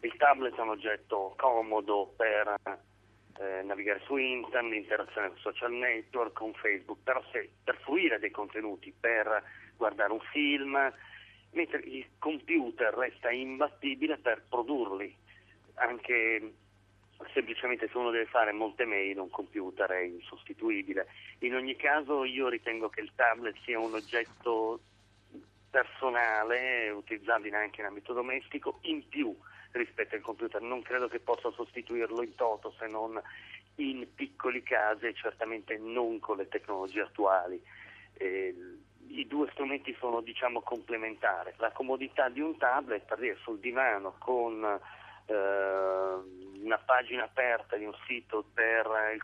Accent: native